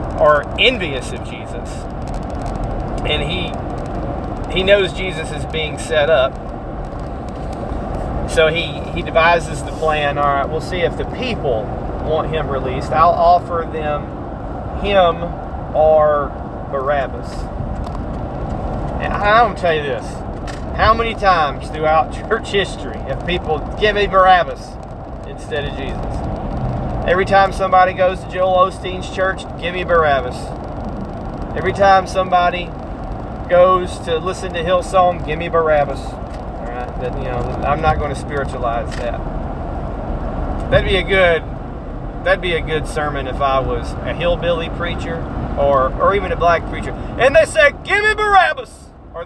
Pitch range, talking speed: 150-190 Hz, 145 wpm